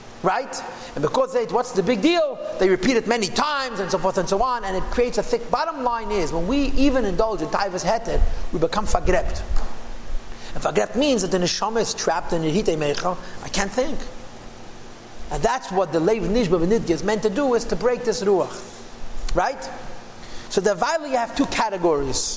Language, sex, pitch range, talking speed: English, male, 185-245 Hz, 200 wpm